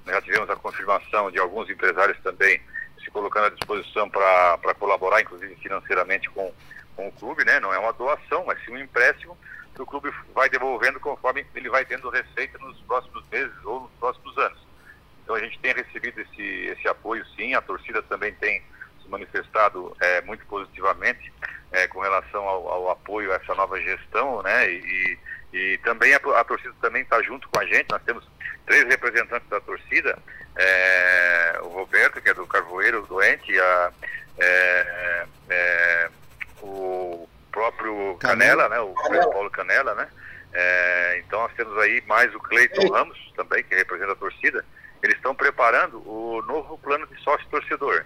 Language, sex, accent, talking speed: Portuguese, male, Brazilian, 170 wpm